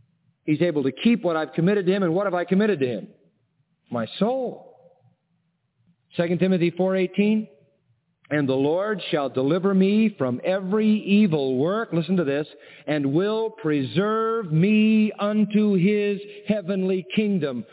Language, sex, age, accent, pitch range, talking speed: English, male, 50-69, American, 155-205 Hz, 140 wpm